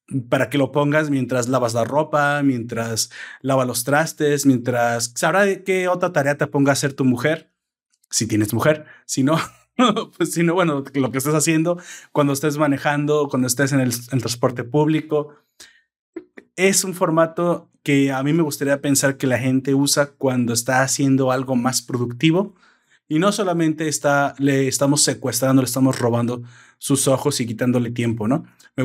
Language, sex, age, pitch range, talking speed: Spanish, male, 30-49, 130-155 Hz, 175 wpm